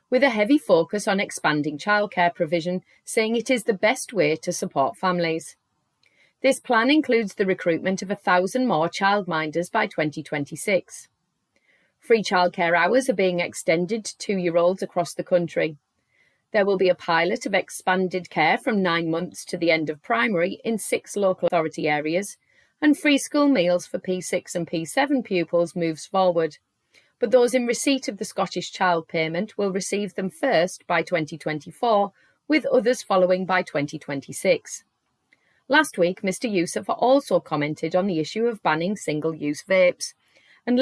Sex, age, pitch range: female, 30-49, 170-230 Hz